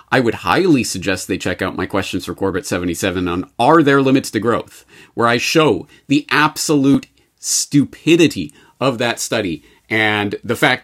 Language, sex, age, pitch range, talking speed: English, male, 40-59, 135-215 Hz, 160 wpm